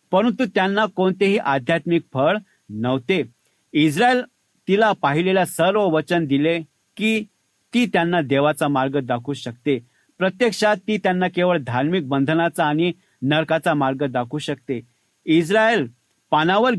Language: English